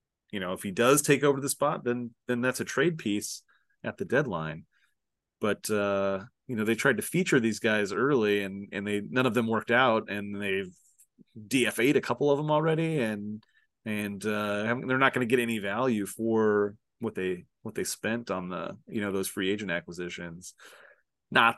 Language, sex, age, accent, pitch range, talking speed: English, male, 30-49, American, 100-130 Hz, 195 wpm